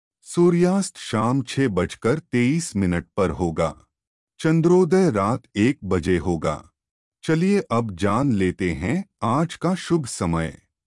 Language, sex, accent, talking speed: Hindi, male, native, 120 wpm